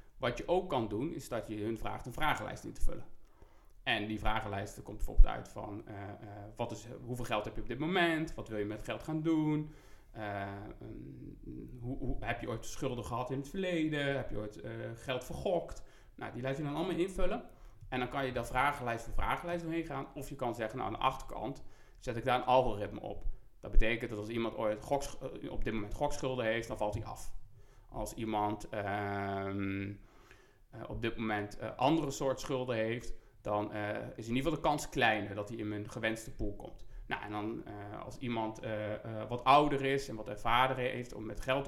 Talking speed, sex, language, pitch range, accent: 205 wpm, male, Dutch, 105-135 Hz, Dutch